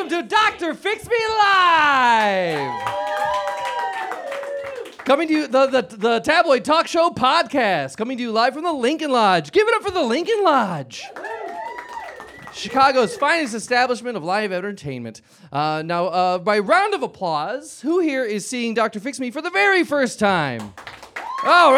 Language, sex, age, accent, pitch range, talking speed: English, male, 30-49, American, 165-270 Hz, 155 wpm